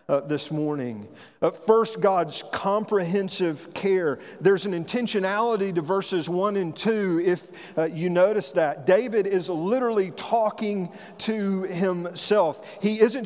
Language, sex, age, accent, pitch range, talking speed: English, male, 40-59, American, 165-205 Hz, 130 wpm